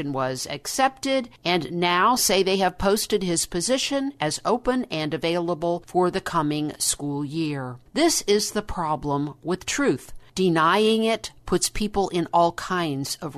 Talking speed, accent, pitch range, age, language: 150 wpm, American, 160-205 Hz, 50-69, English